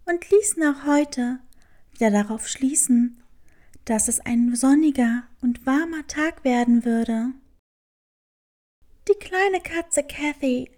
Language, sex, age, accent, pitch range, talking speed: German, female, 20-39, German, 255-320 Hz, 110 wpm